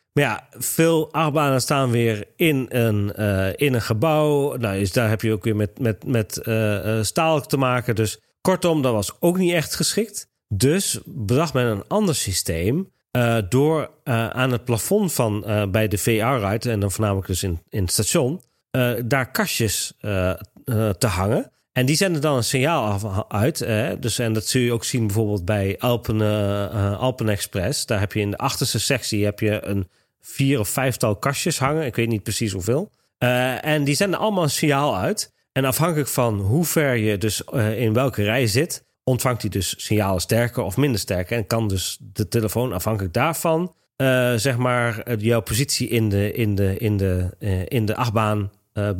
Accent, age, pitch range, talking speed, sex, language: Dutch, 40-59, 105-135 Hz, 195 wpm, male, Dutch